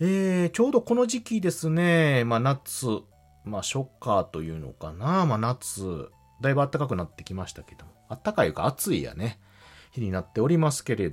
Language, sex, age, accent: Japanese, male, 30-49, native